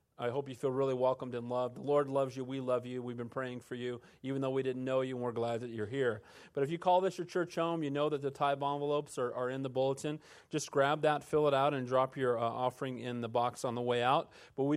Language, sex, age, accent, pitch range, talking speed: English, male, 40-59, American, 125-140 Hz, 290 wpm